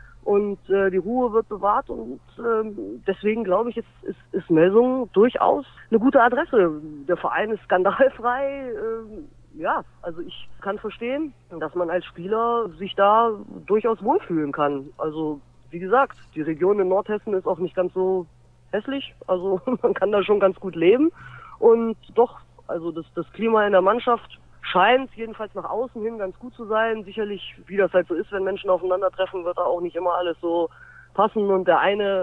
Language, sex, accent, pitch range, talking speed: German, female, German, 185-225 Hz, 180 wpm